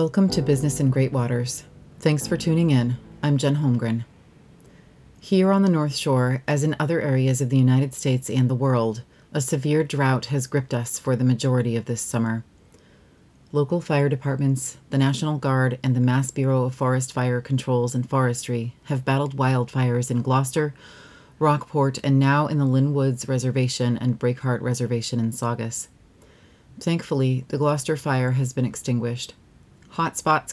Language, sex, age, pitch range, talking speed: English, female, 30-49, 125-145 Hz, 165 wpm